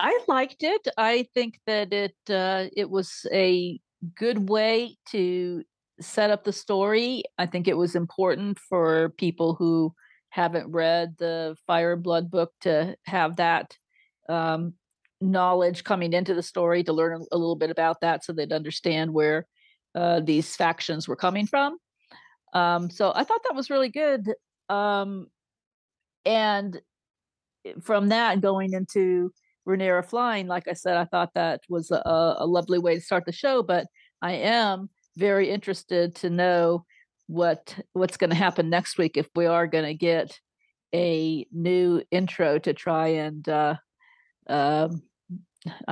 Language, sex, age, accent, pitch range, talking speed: English, female, 50-69, American, 170-195 Hz, 150 wpm